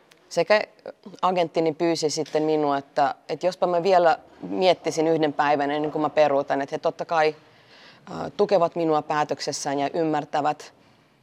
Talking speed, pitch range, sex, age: 140 wpm, 150-180 Hz, female, 30-49